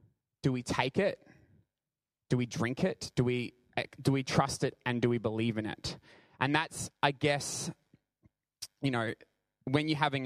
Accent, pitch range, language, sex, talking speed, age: Australian, 115-140 Hz, English, male, 170 wpm, 20-39